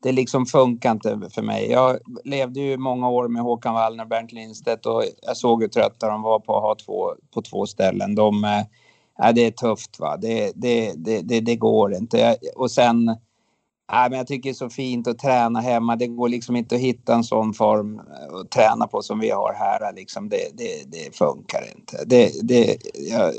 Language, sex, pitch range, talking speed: Swedish, male, 115-135 Hz, 210 wpm